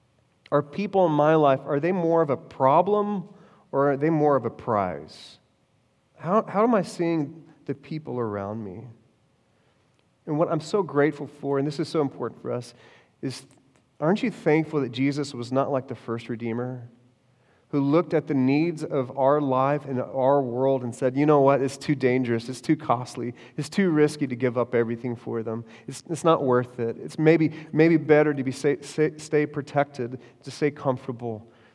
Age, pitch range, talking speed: 30-49, 135-175 Hz, 190 wpm